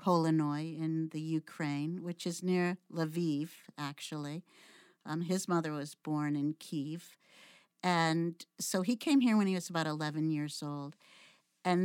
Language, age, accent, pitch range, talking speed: English, 50-69, American, 160-185 Hz, 145 wpm